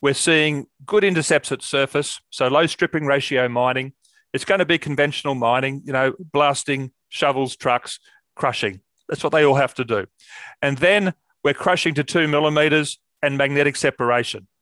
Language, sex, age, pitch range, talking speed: English, male, 40-59, 135-160 Hz, 165 wpm